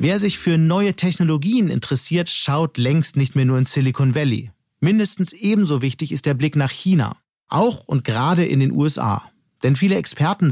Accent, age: German, 40-59